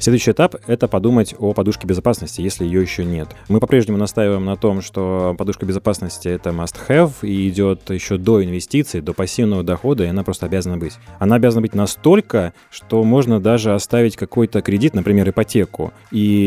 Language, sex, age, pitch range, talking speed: Russian, male, 20-39, 90-110 Hz, 180 wpm